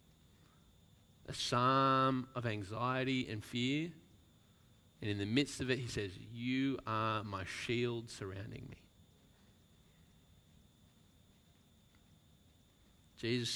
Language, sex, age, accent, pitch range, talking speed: English, male, 30-49, Australian, 95-120 Hz, 90 wpm